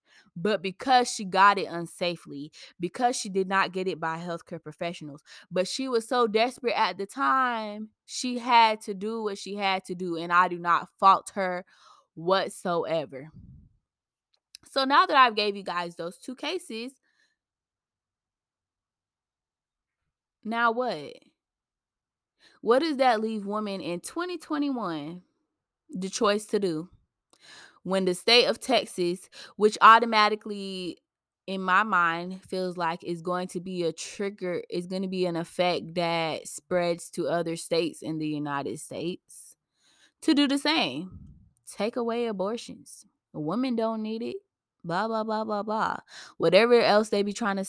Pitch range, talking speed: 175-235 Hz, 145 wpm